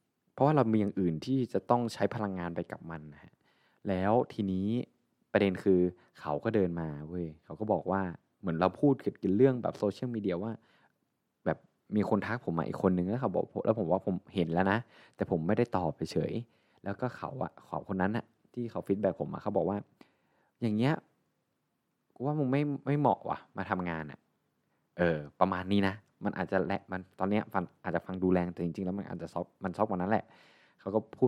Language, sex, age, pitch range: Thai, male, 20-39, 90-115 Hz